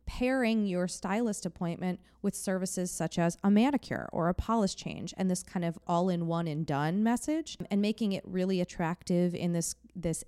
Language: English